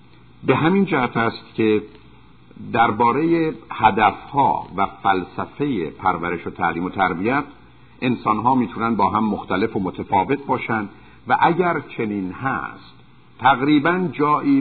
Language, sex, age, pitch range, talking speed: Persian, male, 50-69, 100-140 Hz, 115 wpm